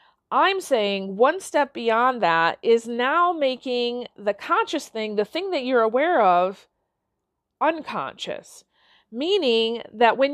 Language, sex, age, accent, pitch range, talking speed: English, female, 40-59, American, 220-290 Hz, 130 wpm